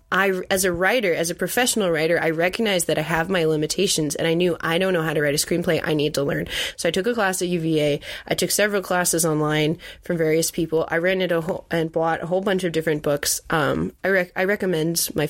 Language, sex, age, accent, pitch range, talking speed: English, female, 20-39, American, 160-190 Hz, 240 wpm